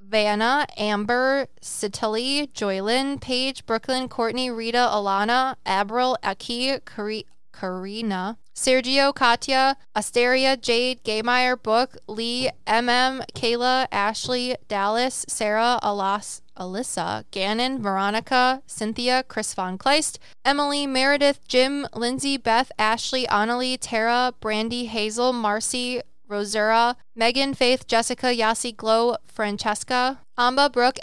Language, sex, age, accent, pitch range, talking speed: English, female, 20-39, American, 215-250 Hz, 105 wpm